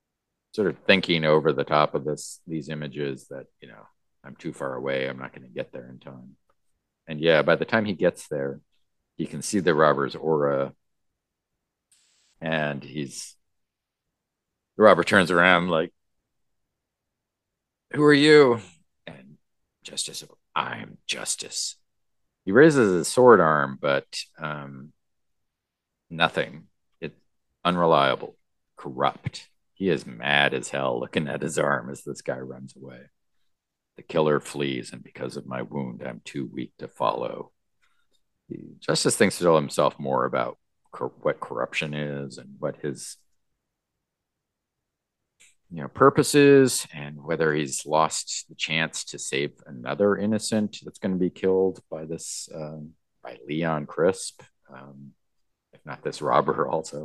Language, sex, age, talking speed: English, male, 40-59, 145 wpm